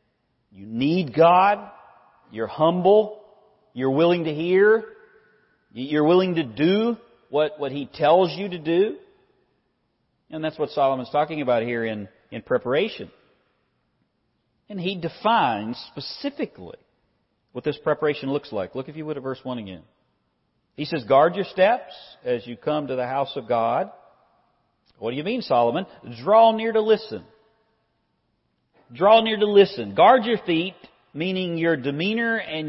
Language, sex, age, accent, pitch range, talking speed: English, male, 40-59, American, 135-200 Hz, 150 wpm